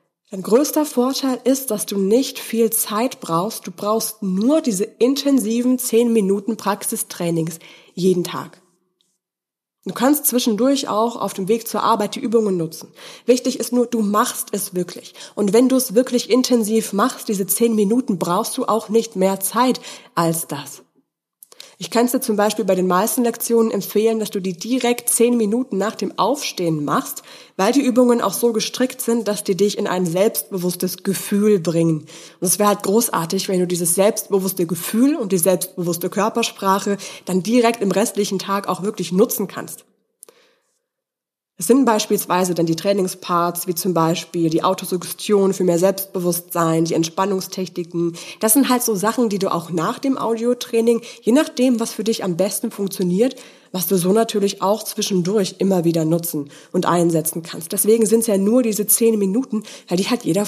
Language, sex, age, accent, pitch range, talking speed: German, female, 20-39, German, 185-235 Hz, 175 wpm